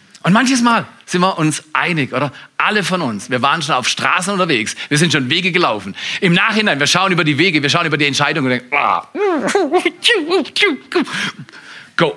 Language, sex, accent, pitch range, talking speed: German, male, German, 120-170 Hz, 185 wpm